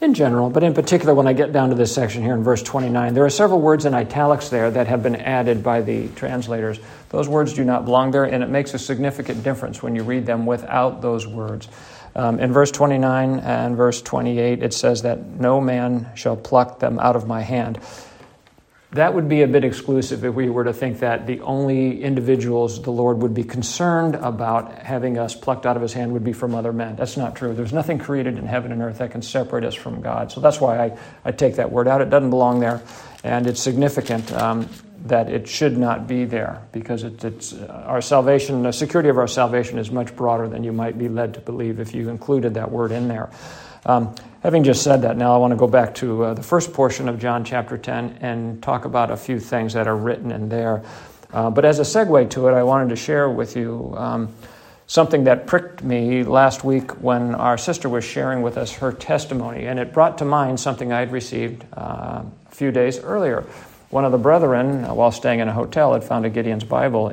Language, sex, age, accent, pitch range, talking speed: English, male, 50-69, American, 115-135 Hz, 225 wpm